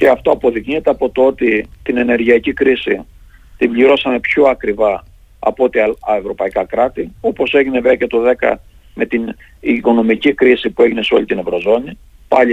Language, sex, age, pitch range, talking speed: Greek, male, 50-69, 120-195 Hz, 170 wpm